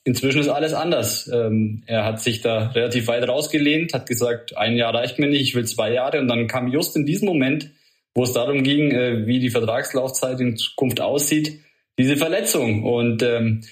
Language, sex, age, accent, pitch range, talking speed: German, male, 20-39, German, 125-155 Hz, 185 wpm